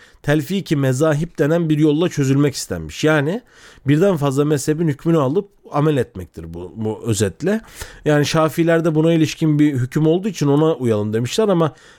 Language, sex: Turkish, male